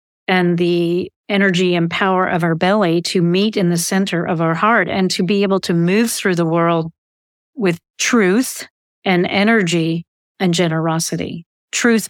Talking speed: 160 wpm